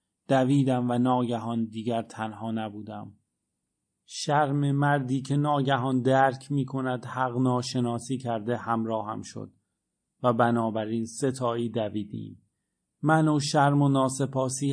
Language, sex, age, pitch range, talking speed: Persian, male, 30-49, 115-145 Hz, 105 wpm